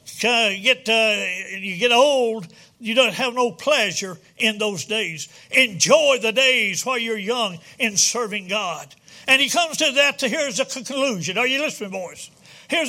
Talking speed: 170 wpm